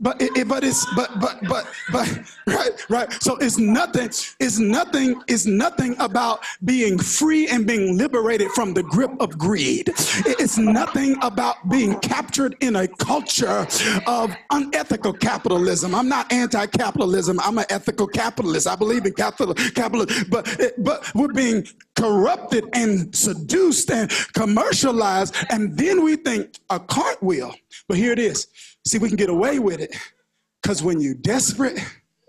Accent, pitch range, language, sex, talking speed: American, 195-255 Hz, English, male, 165 wpm